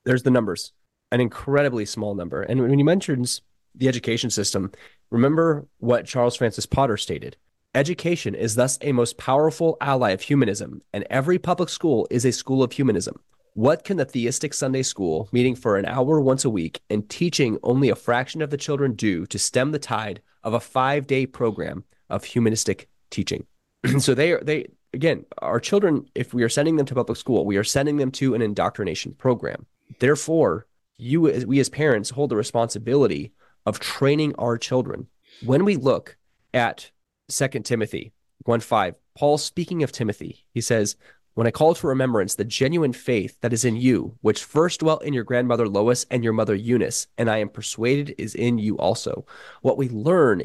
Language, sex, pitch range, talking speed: English, male, 115-145 Hz, 180 wpm